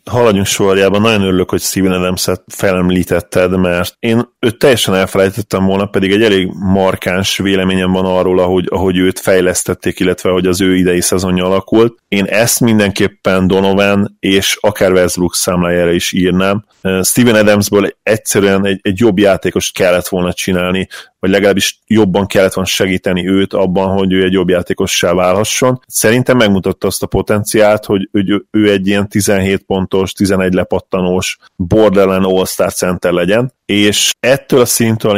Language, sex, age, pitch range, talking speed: Hungarian, male, 30-49, 95-105 Hz, 150 wpm